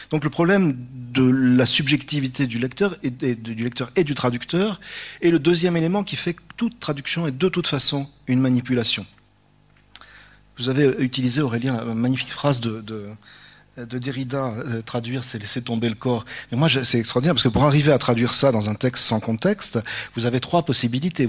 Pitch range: 120-150 Hz